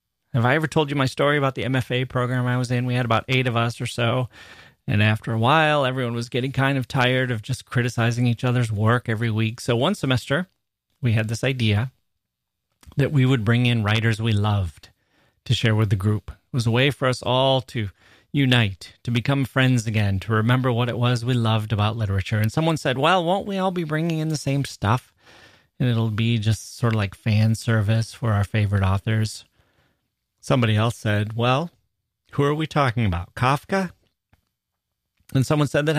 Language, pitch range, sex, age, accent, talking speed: English, 110-135 Hz, male, 30-49, American, 205 wpm